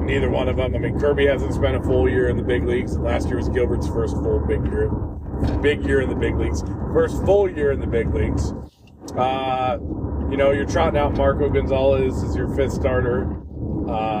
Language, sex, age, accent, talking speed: English, male, 30-49, American, 210 wpm